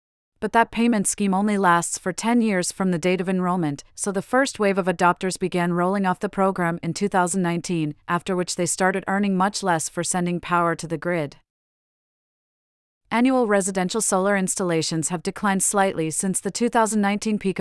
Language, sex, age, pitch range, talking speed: English, female, 40-59, 170-200 Hz, 175 wpm